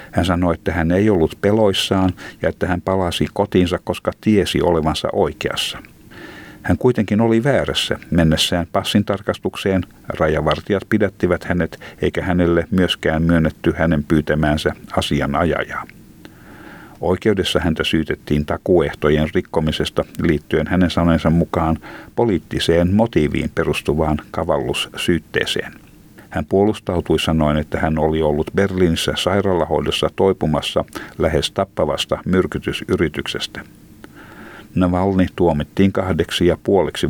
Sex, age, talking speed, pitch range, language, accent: male, 60-79, 100 wpm, 80-95 Hz, Finnish, native